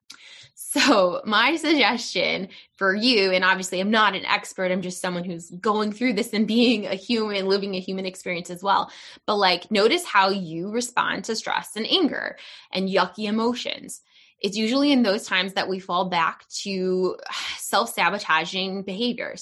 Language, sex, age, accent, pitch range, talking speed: English, female, 20-39, American, 185-245 Hz, 165 wpm